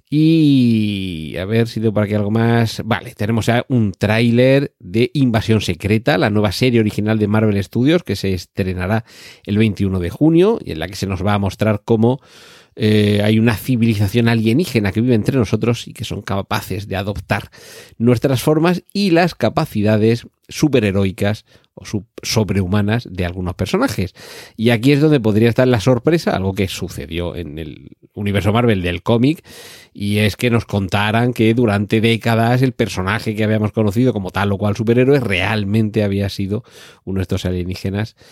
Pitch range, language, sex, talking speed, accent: 100-125 Hz, Spanish, male, 170 wpm, Spanish